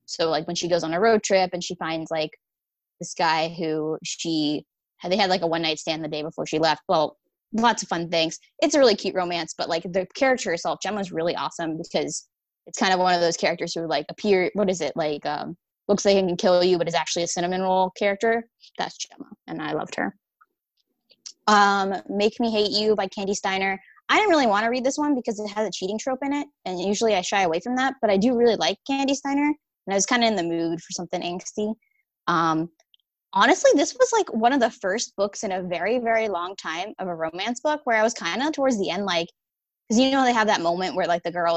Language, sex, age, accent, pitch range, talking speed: English, female, 10-29, American, 170-225 Hz, 245 wpm